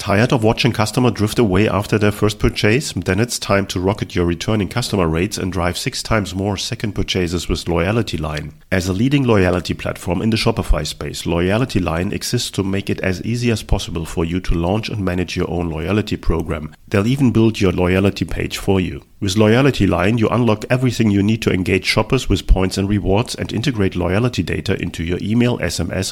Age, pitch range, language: 40-59, 90-115 Hz, English